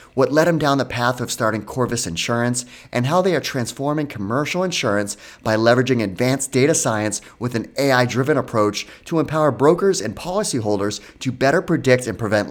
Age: 30-49